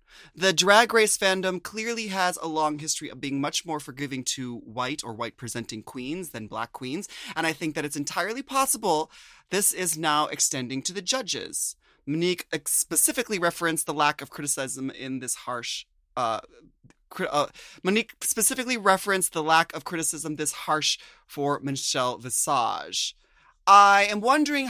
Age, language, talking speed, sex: 30-49, English, 155 wpm, male